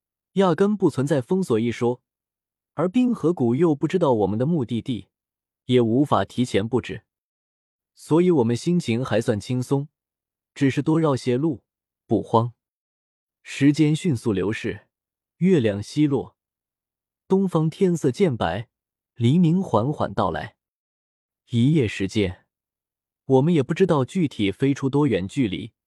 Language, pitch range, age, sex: Chinese, 110-165 Hz, 20-39, male